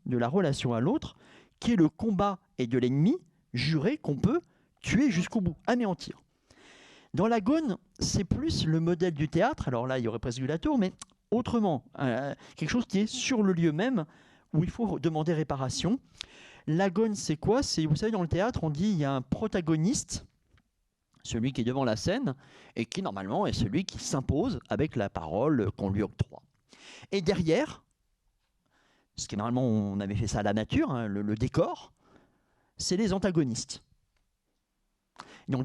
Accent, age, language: French, 40-59, French